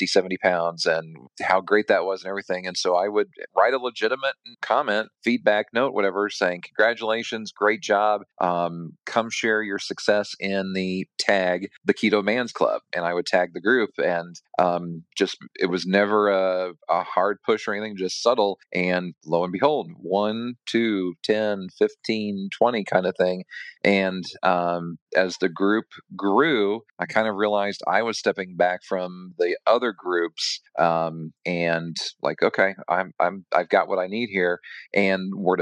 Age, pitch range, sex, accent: 40-59, 90-105 Hz, male, American